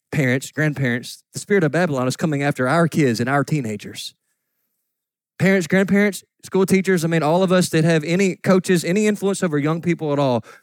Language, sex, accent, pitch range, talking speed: English, male, American, 130-200 Hz, 190 wpm